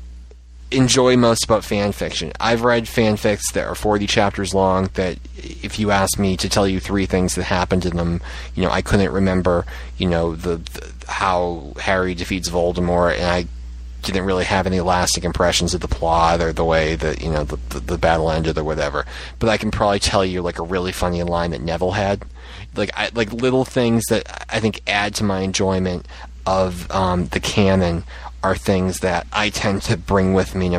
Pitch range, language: 85-100 Hz, English